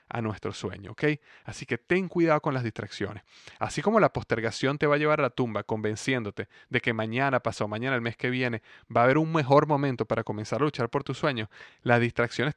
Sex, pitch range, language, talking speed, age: male, 110-145 Hz, Spanish, 225 wpm, 30-49